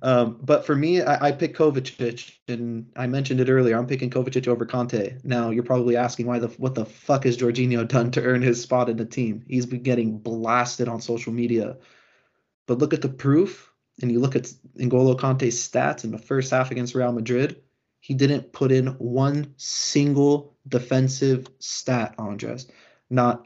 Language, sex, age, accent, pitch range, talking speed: English, male, 20-39, American, 120-140 Hz, 185 wpm